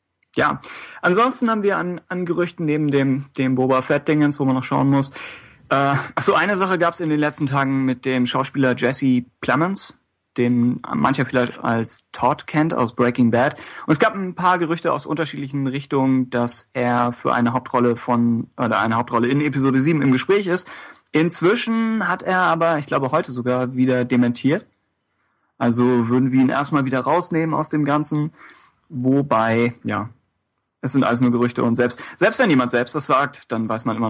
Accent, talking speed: German, 185 wpm